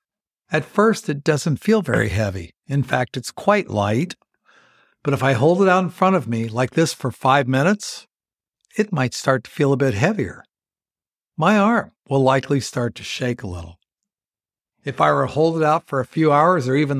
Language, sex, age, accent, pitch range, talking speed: English, male, 60-79, American, 130-160 Hz, 200 wpm